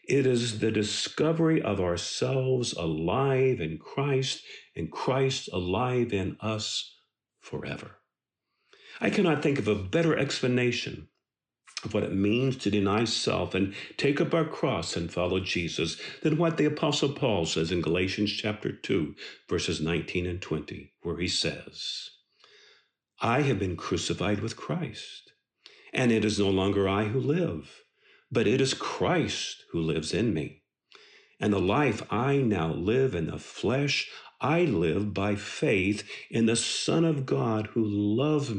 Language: English